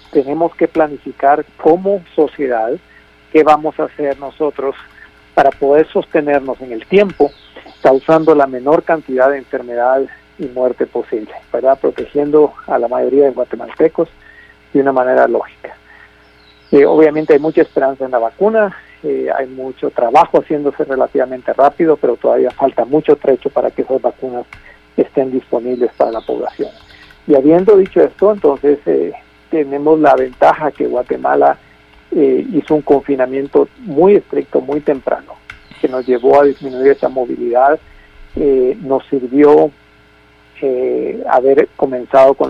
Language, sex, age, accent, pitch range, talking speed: Spanish, male, 50-69, Mexican, 130-155 Hz, 140 wpm